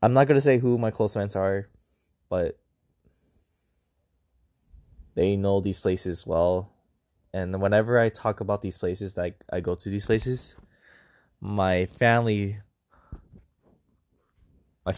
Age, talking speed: 20-39, 120 wpm